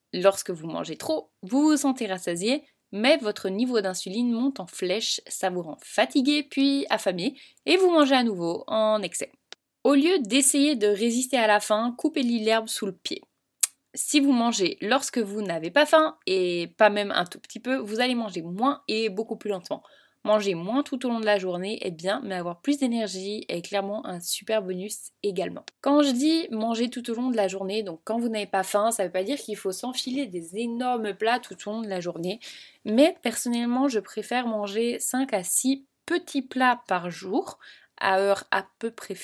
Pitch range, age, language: 195-265 Hz, 20-39, French